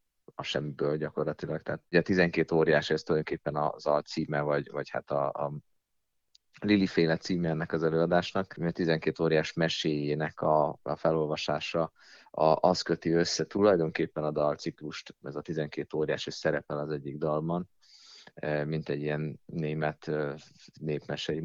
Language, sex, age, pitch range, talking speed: Hungarian, male, 30-49, 75-85 Hz, 145 wpm